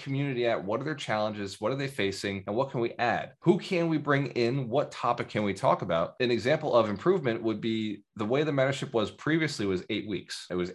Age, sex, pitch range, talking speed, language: 20-39, male, 100-135 Hz, 240 wpm, English